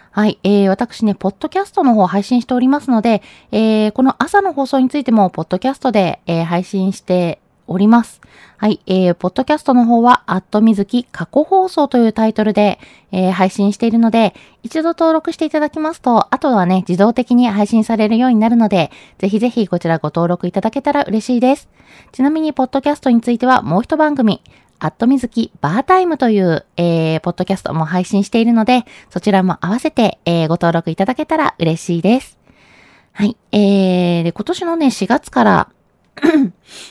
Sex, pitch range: female, 190-265 Hz